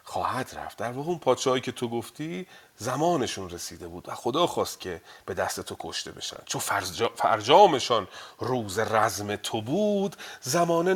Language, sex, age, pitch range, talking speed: Persian, male, 40-59, 110-165 Hz, 150 wpm